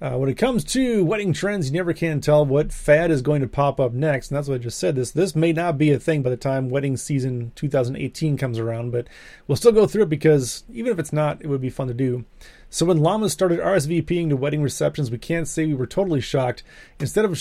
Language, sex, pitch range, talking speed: English, male, 130-160 Hz, 260 wpm